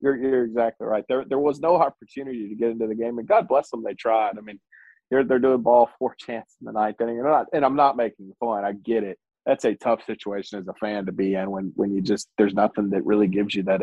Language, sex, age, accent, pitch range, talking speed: English, male, 30-49, American, 105-130 Hz, 275 wpm